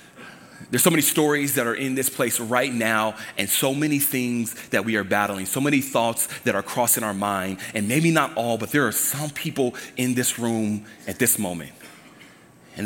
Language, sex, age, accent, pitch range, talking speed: English, male, 30-49, American, 110-145 Hz, 200 wpm